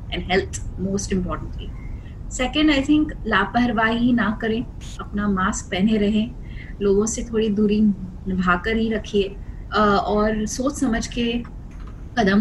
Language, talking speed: Hindi, 60 wpm